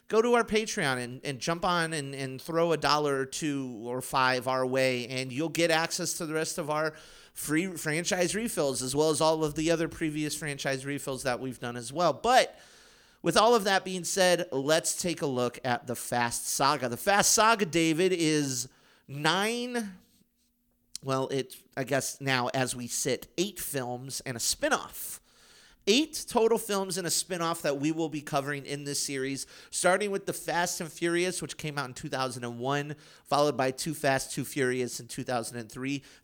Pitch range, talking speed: 130-175 Hz, 190 wpm